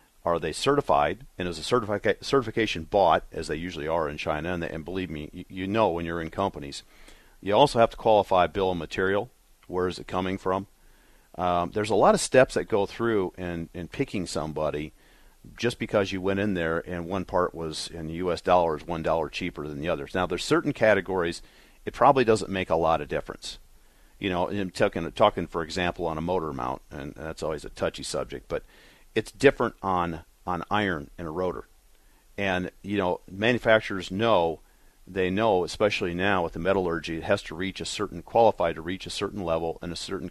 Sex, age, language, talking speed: male, 40-59, English, 205 wpm